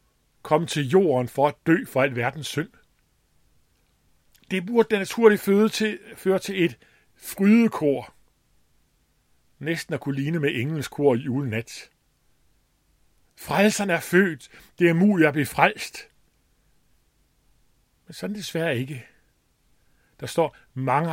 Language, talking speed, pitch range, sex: Danish, 125 wpm, 130-190 Hz, male